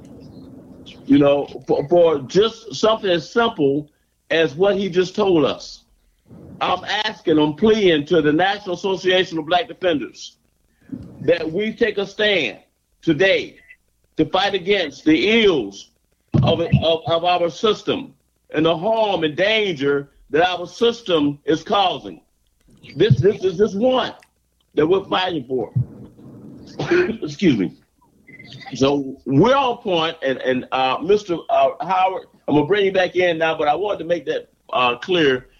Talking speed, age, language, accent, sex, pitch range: 150 wpm, 50-69, English, American, male, 140-195 Hz